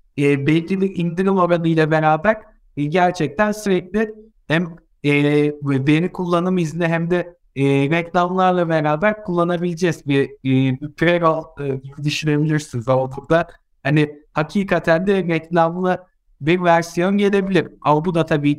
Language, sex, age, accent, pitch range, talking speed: Turkish, male, 60-79, native, 150-180 Hz, 130 wpm